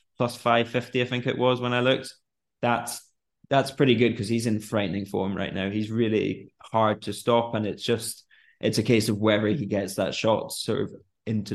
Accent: British